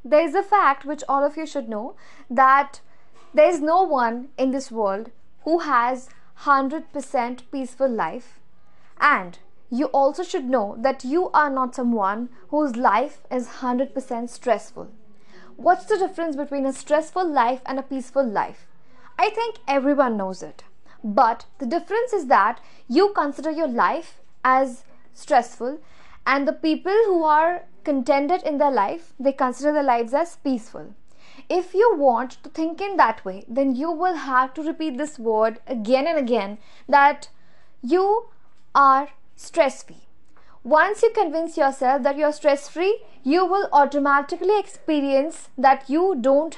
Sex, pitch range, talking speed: female, 260-330 Hz, 155 wpm